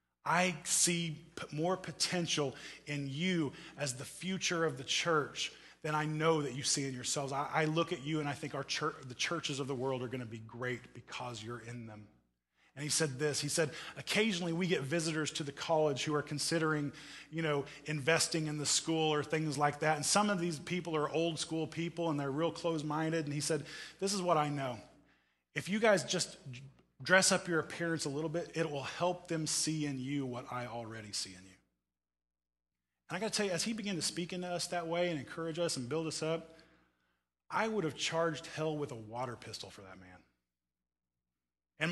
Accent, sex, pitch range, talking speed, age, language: American, male, 125-170 Hz, 210 wpm, 20-39, English